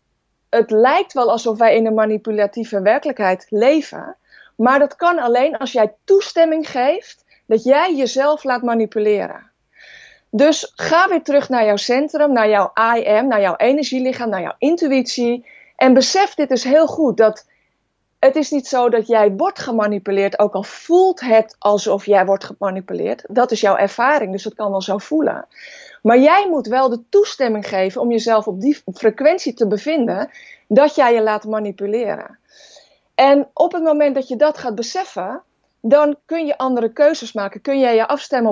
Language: Dutch